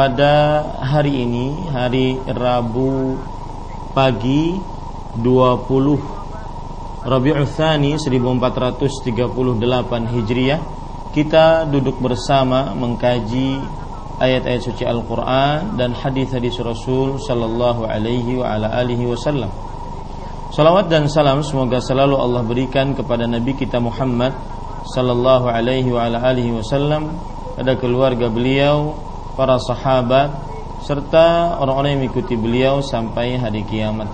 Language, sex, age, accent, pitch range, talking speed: Indonesian, male, 40-59, native, 120-140 Hz, 100 wpm